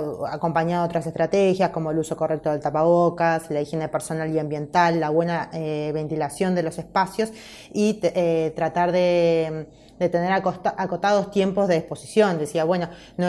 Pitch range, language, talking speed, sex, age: 155-180 Hz, Spanish, 165 wpm, female, 20-39